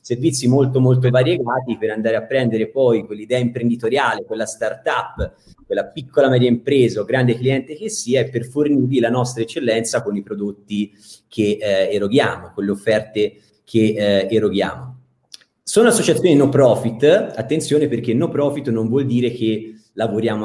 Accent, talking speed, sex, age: native, 155 wpm, male, 30-49